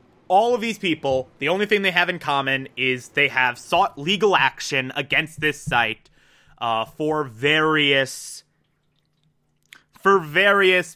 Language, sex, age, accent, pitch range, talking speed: English, male, 20-39, American, 130-175 Hz, 135 wpm